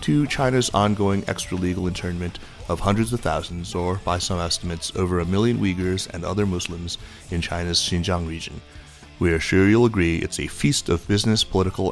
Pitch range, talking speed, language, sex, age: 90-110 Hz, 175 wpm, English, male, 30-49